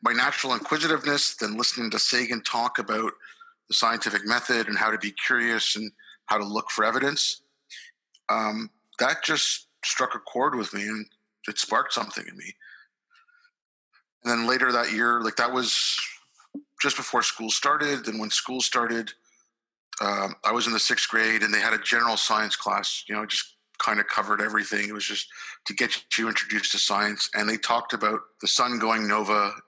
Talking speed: 185 wpm